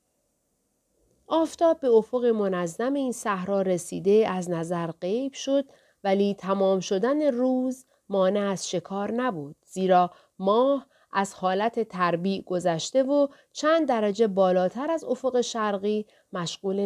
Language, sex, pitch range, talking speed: Persian, female, 180-250 Hz, 120 wpm